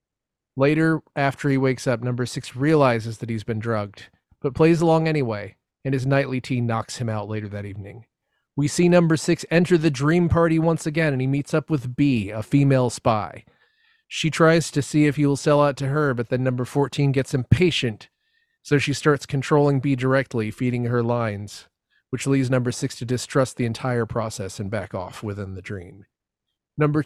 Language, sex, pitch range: English, male, 115-145 Hz